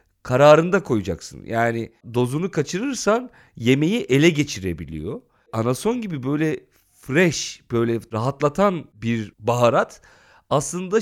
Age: 40-59